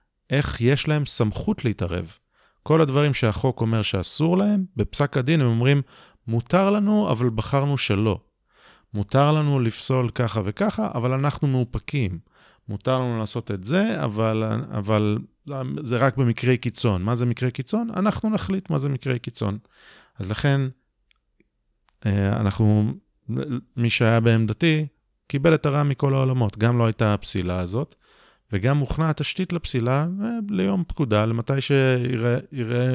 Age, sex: 30-49, male